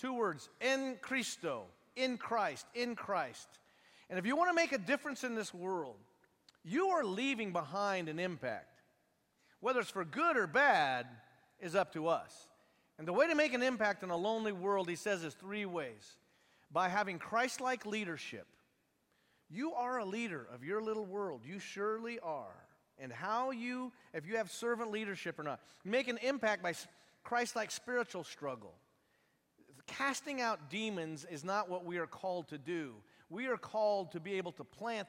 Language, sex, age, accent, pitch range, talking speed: English, male, 40-59, American, 170-225 Hz, 170 wpm